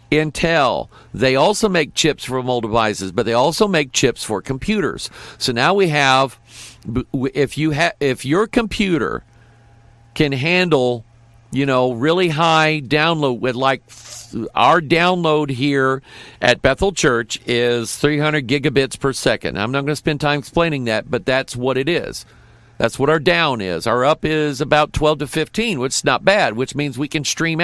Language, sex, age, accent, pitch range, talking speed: English, male, 50-69, American, 115-160 Hz, 175 wpm